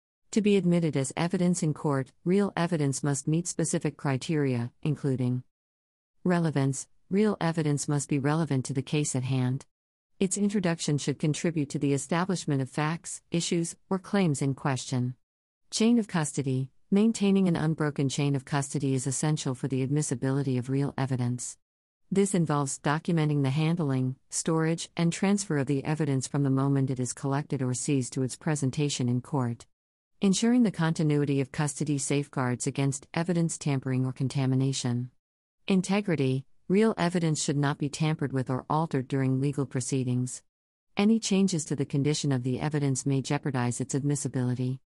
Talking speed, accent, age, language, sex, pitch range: 155 wpm, American, 50-69, English, female, 130-165 Hz